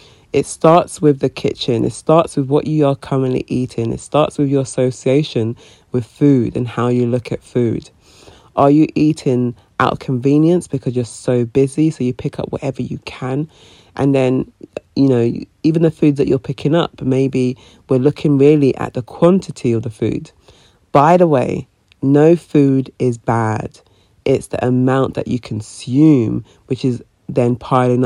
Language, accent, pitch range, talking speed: English, British, 120-145 Hz, 175 wpm